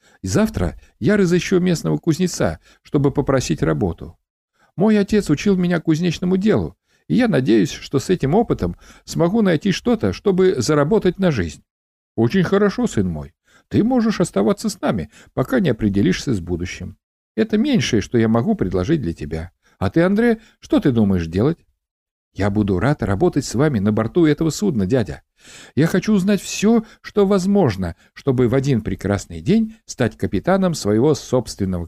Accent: native